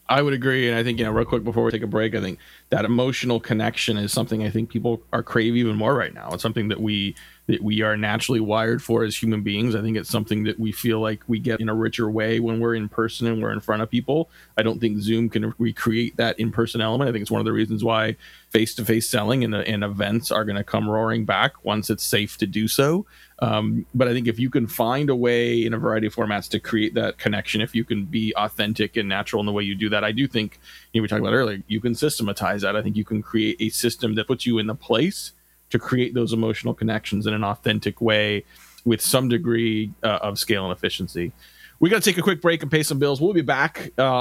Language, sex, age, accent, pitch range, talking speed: English, male, 30-49, American, 110-120 Hz, 260 wpm